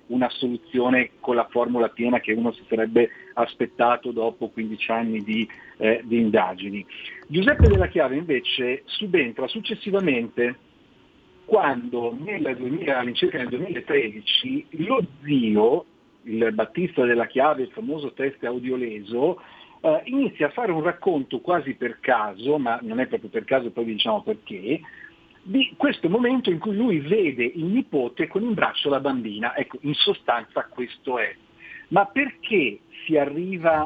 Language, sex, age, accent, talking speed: Italian, male, 50-69, native, 145 wpm